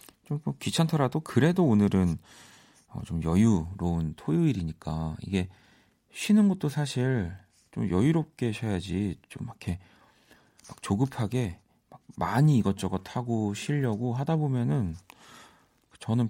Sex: male